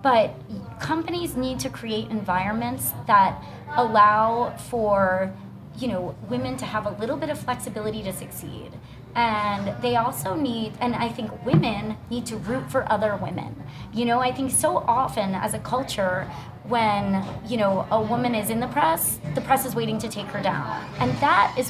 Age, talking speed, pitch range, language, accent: 30-49, 175 wpm, 195-255 Hz, English, American